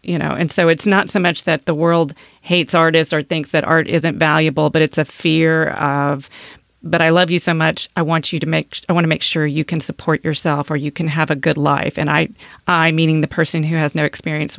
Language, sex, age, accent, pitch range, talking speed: English, female, 40-59, American, 150-170 Hz, 250 wpm